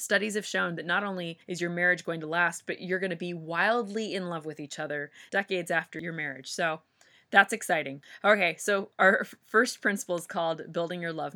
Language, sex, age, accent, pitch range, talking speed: English, female, 20-39, American, 160-200 Hz, 210 wpm